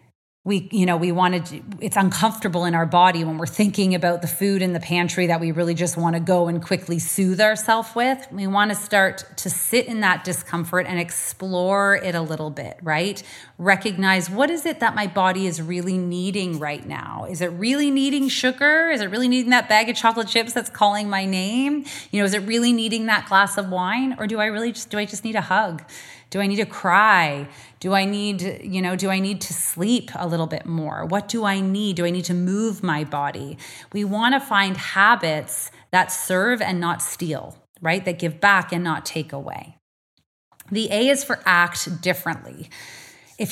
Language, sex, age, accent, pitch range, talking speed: English, female, 30-49, American, 170-210 Hz, 210 wpm